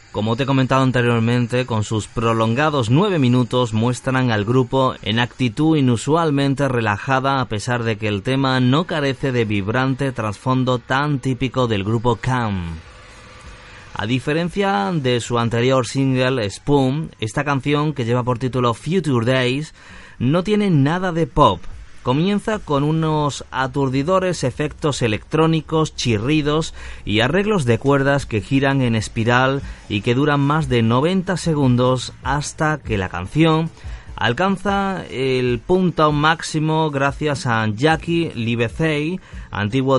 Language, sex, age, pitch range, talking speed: Spanish, male, 30-49, 115-150 Hz, 130 wpm